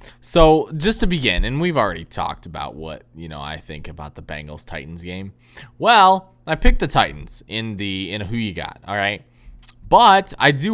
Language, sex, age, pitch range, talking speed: English, male, 20-39, 110-160 Hz, 200 wpm